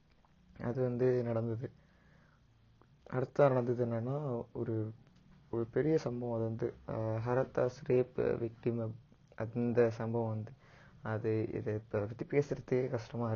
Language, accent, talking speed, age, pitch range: Tamil, native, 110 wpm, 20-39, 115-125 Hz